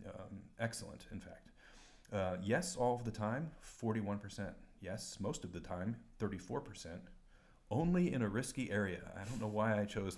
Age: 40-59